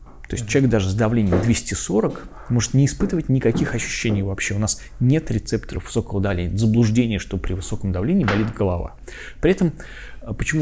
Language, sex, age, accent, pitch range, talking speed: Russian, male, 20-39, native, 95-115 Hz, 165 wpm